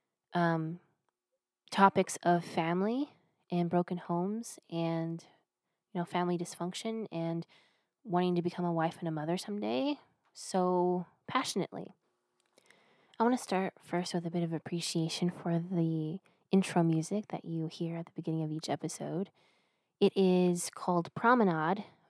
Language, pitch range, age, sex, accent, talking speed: English, 165-185 Hz, 20-39, female, American, 140 wpm